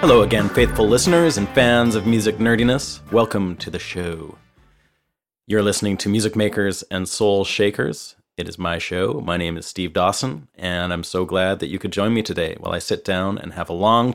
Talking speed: 205 wpm